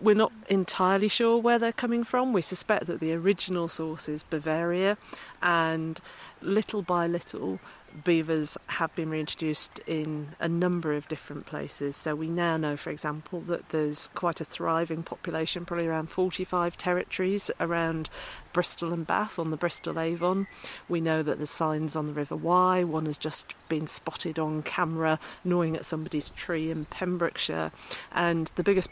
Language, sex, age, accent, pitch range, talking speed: English, female, 40-59, British, 155-180 Hz, 165 wpm